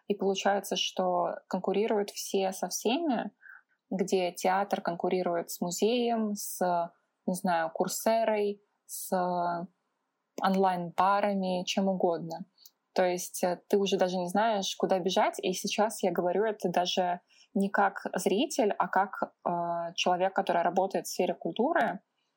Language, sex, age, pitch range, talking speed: Russian, female, 20-39, 180-205 Hz, 130 wpm